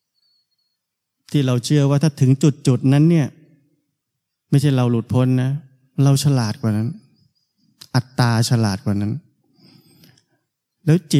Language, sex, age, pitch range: Thai, male, 20-39, 125-145 Hz